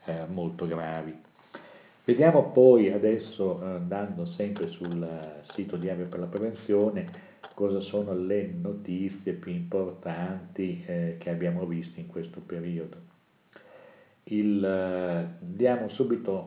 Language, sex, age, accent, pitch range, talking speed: Italian, male, 50-69, native, 85-105 Hz, 115 wpm